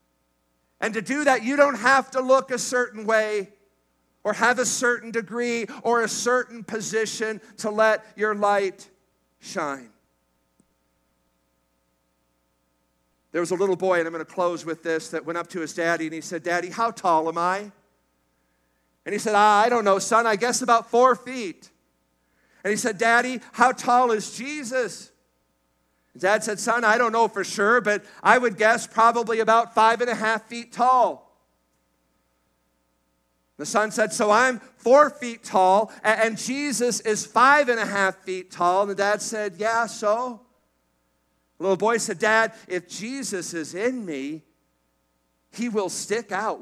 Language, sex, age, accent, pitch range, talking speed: English, male, 50-69, American, 140-235 Hz, 165 wpm